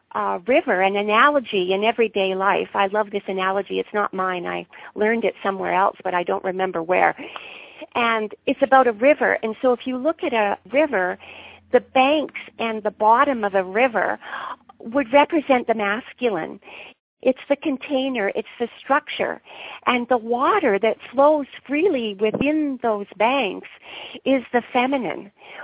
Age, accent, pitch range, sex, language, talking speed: 40-59, American, 210-260 Hz, female, English, 155 wpm